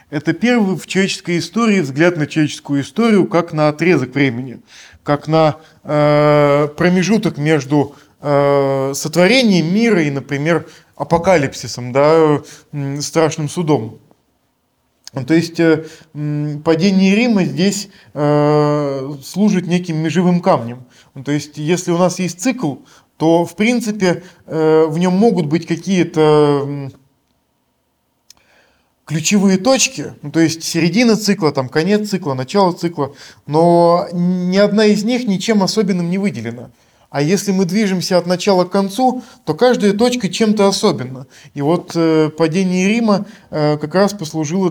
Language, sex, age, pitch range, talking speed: Russian, male, 20-39, 150-190 Hz, 115 wpm